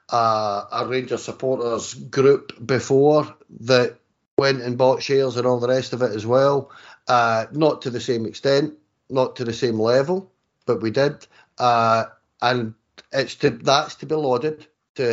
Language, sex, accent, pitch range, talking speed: English, male, British, 120-145 Hz, 165 wpm